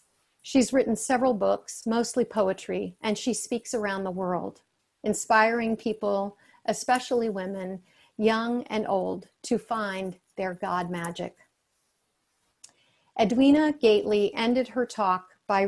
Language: English